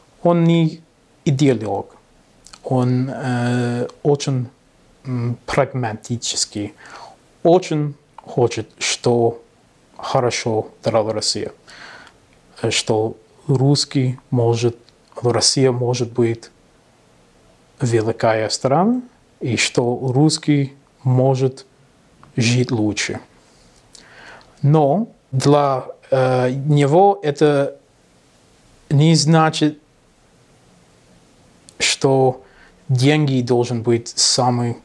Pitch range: 120-150 Hz